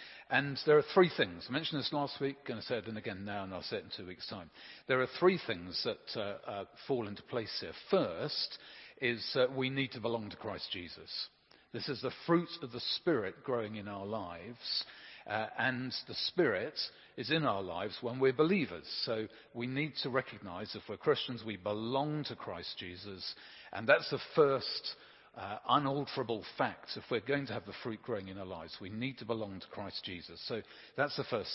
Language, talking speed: English, 210 wpm